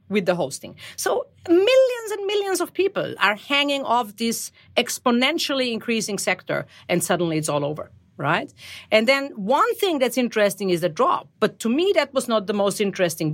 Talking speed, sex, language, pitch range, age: 180 wpm, female, English, 195-280 Hz, 40-59